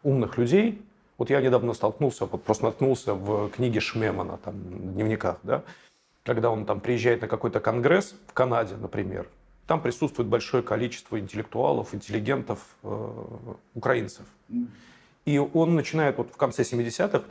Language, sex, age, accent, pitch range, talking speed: Russian, male, 40-59, native, 115-135 Hz, 145 wpm